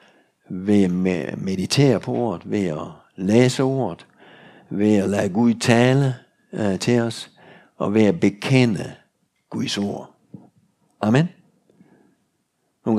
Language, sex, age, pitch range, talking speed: Danish, male, 60-79, 95-110 Hz, 120 wpm